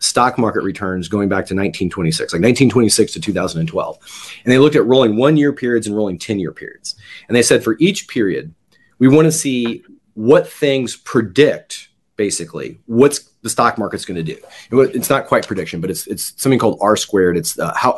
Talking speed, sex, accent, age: 190 wpm, male, American, 30-49